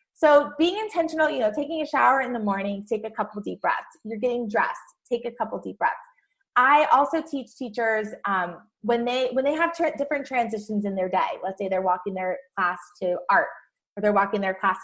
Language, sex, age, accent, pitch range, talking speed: English, female, 20-39, American, 205-295 Hz, 215 wpm